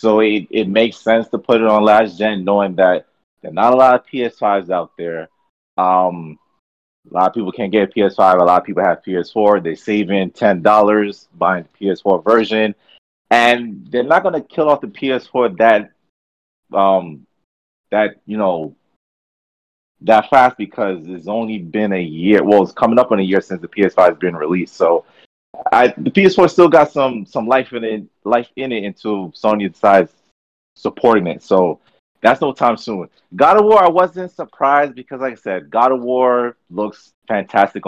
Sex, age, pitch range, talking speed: male, 30-49, 95-130 Hz, 185 wpm